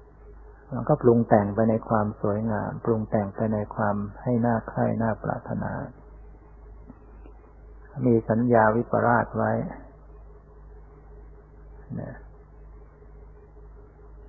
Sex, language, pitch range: male, Thai, 110-125 Hz